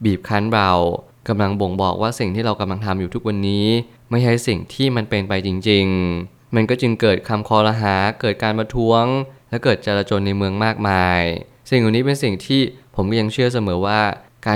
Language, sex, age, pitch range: Thai, male, 20-39, 100-120 Hz